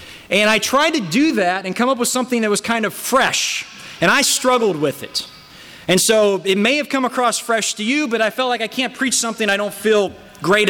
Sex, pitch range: male, 180-235 Hz